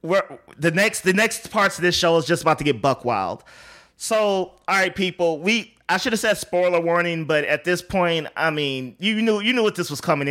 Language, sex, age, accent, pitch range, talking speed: English, male, 20-39, American, 150-205 Hz, 240 wpm